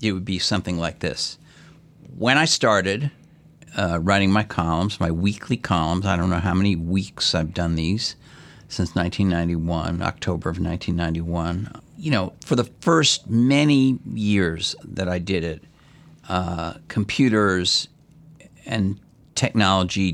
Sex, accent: male, American